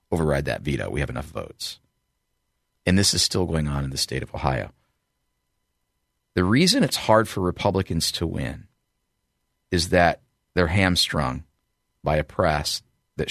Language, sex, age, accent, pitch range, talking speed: English, male, 40-59, American, 75-100 Hz, 155 wpm